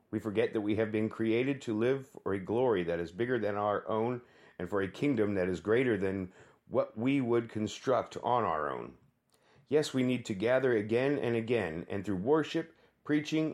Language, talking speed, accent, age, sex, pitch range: English, 200 wpm, American, 50-69, male, 105-140 Hz